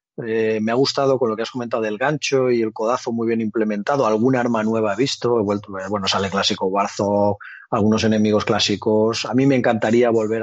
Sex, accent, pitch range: male, Spanish, 110-125 Hz